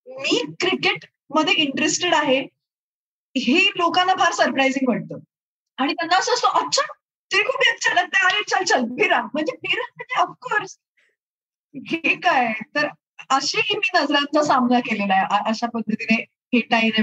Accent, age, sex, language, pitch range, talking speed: native, 20-39, female, Marathi, 230-310 Hz, 125 wpm